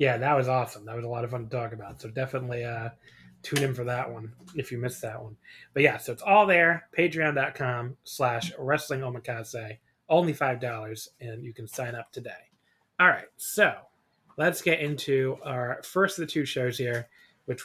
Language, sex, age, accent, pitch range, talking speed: English, male, 20-39, American, 120-155 Hz, 195 wpm